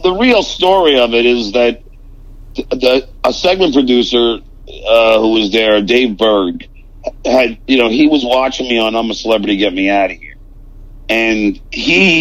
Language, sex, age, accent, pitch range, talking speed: English, male, 50-69, American, 105-120 Hz, 165 wpm